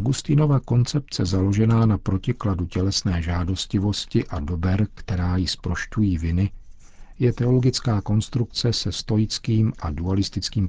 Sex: male